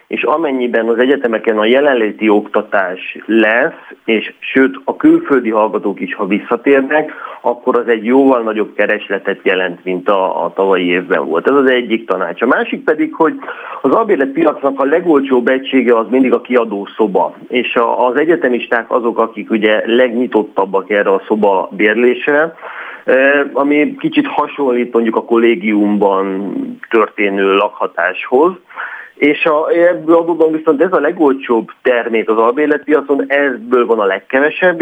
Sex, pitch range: male, 115-150 Hz